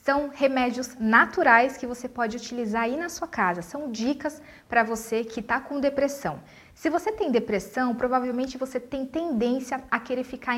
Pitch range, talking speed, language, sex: 225-285 Hz, 170 wpm, Portuguese, female